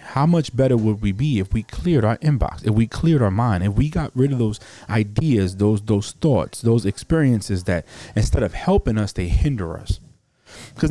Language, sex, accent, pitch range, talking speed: English, male, American, 100-130 Hz, 205 wpm